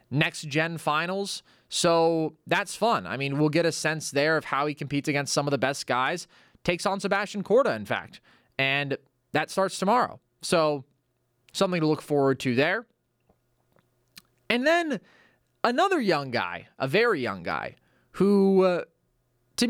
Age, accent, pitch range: 20-39, American, 135-190 Hz